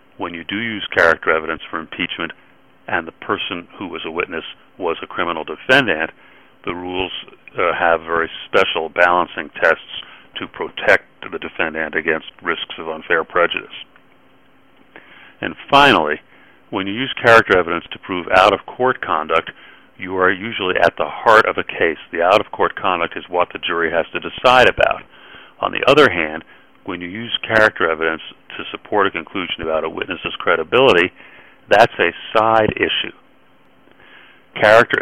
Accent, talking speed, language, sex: American, 155 wpm, English, male